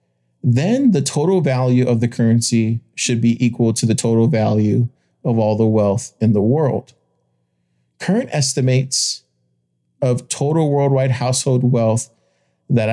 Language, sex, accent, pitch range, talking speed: English, male, American, 115-130 Hz, 135 wpm